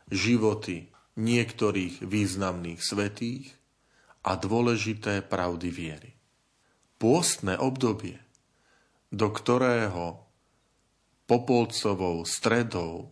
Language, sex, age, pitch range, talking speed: Slovak, male, 40-59, 100-125 Hz, 65 wpm